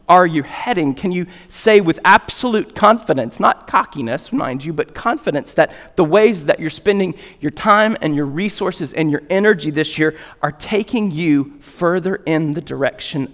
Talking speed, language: 170 wpm, English